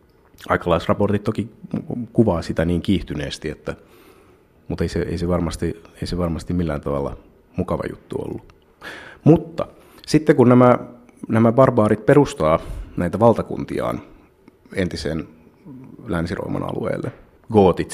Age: 30-49